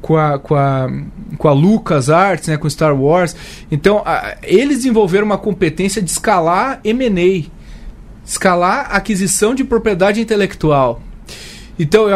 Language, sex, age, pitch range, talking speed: Portuguese, male, 30-49, 155-195 Hz, 135 wpm